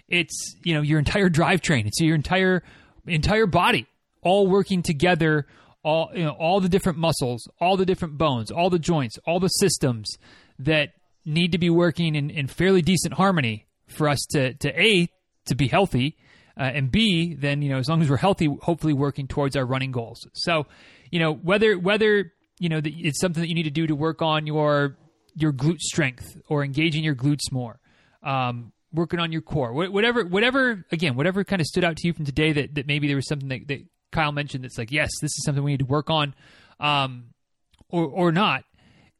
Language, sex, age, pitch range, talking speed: English, male, 30-49, 145-185 Hz, 205 wpm